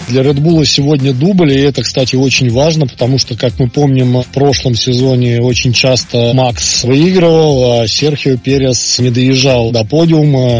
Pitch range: 125-160 Hz